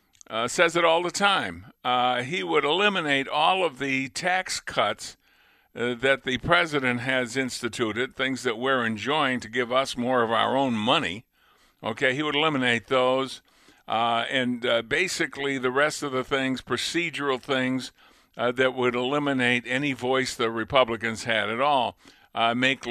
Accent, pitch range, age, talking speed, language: American, 125-150 Hz, 50-69, 160 wpm, English